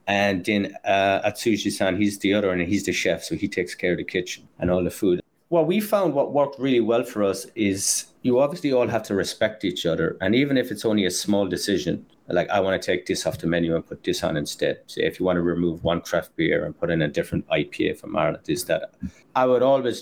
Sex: male